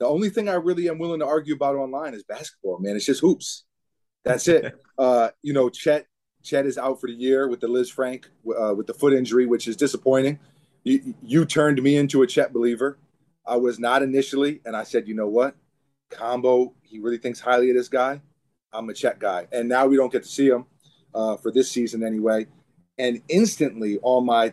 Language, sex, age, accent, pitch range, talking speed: English, male, 30-49, American, 120-150 Hz, 215 wpm